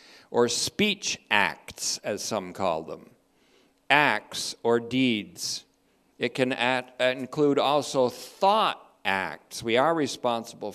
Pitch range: 120-145 Hz